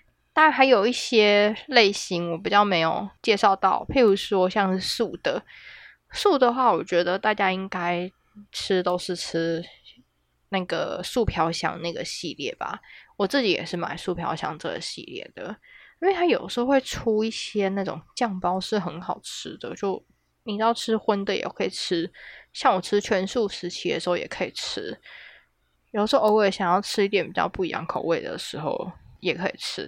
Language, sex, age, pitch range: Chinese, female, 20-39, 175-220 Hz